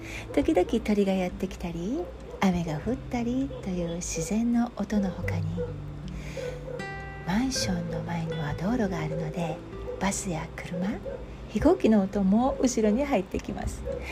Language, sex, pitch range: Japanese, female, 165-255 Hz